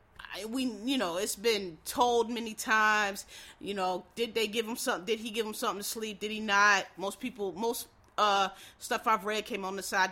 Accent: American